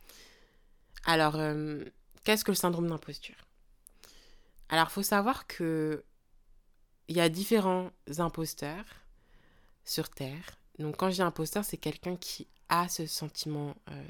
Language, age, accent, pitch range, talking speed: French, 20-39, French, 155-190 Hz, 130 wpm